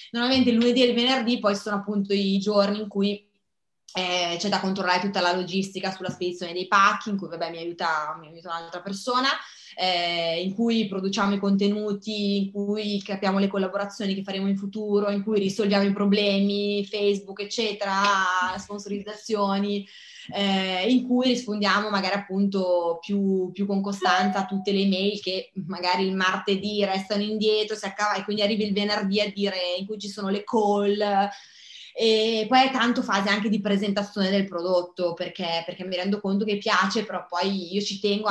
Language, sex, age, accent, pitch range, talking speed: Italian, female, 20-39, native, 180-205 Hz, 175 wpm